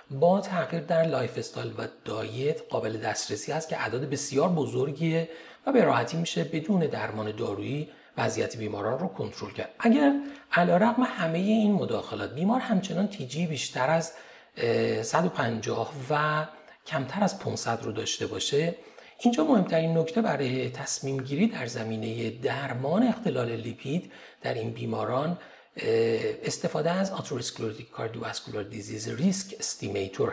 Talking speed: 130 wpm